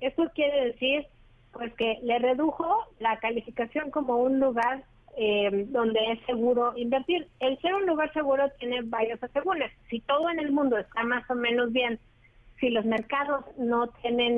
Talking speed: 165 wpm